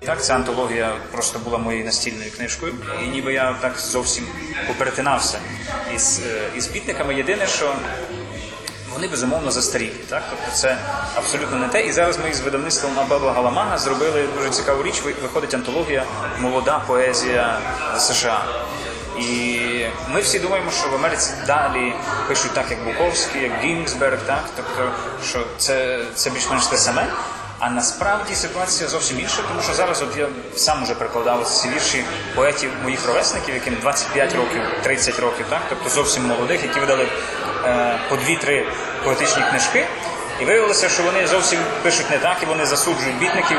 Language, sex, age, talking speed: Ukrainian, male, 20-39, 155 wpm